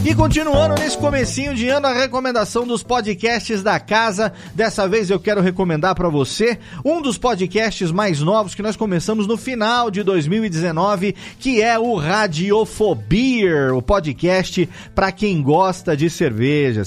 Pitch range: 175-230 Hz